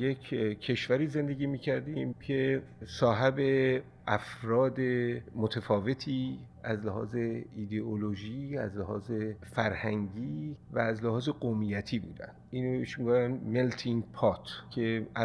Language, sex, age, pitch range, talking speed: Persian, male, 50-69, 110-130 Hz, 95 wpm